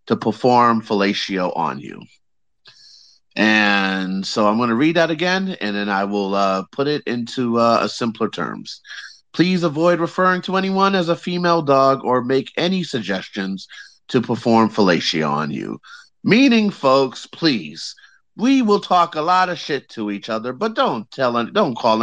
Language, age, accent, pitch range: English, 30-49, American, 105-145 Hz